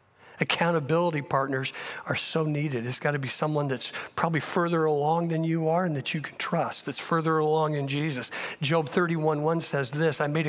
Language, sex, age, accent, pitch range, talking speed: English, male, 50-69, American, 145-175 Hz, 185 wpm